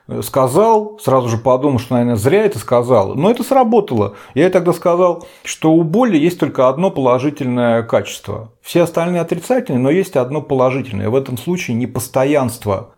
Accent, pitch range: native, 115-160 Hz